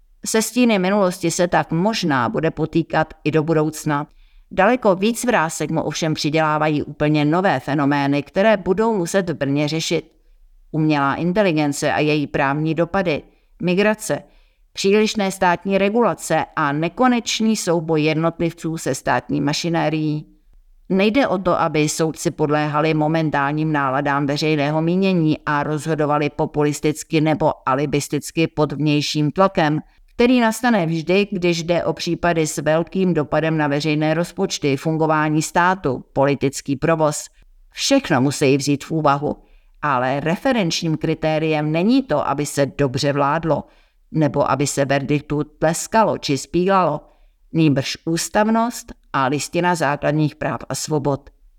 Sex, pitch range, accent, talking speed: female, 150-175 Hz, native, 125 wpm